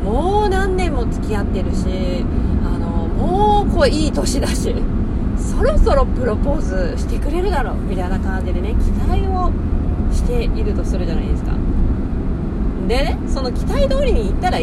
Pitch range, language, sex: 70-85 Hz, Japanese, female